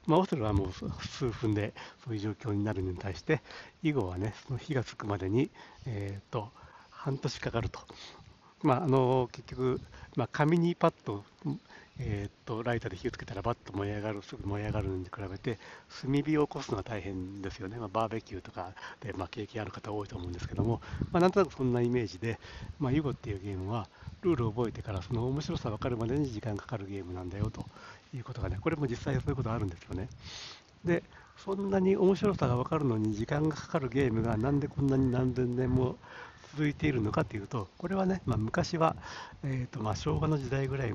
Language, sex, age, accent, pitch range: Japanese, male, 60-79, native, 105-135 Hz